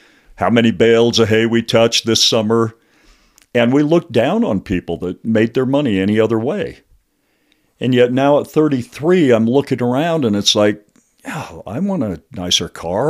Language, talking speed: English, 180 wpm